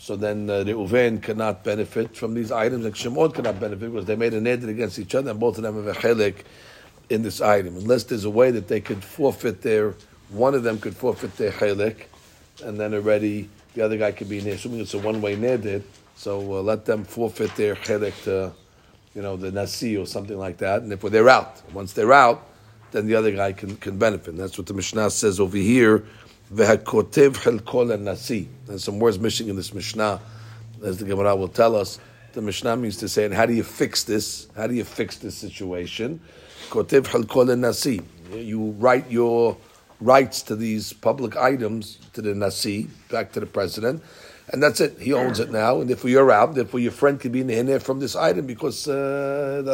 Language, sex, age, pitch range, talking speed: English, male, 50-69, 100-120 Hz, 205 wpm